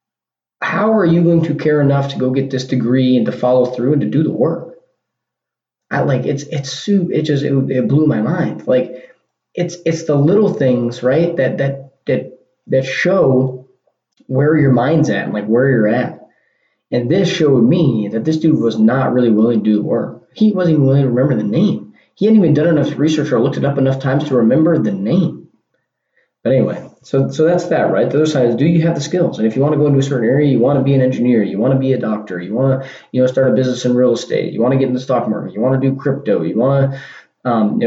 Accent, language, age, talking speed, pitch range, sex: American, English, 20-39, 250 wpm, 130-160 Hz, male